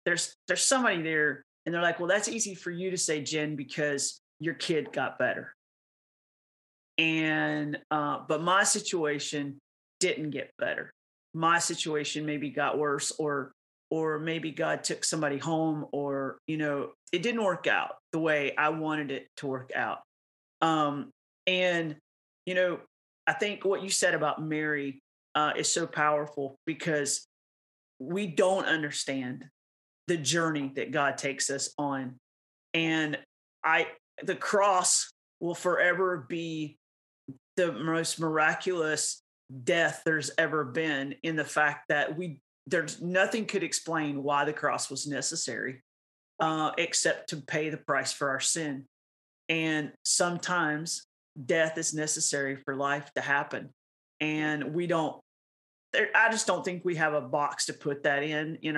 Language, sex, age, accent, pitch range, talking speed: English, male, 40-59, American, 140-165 Hz, 145 wpm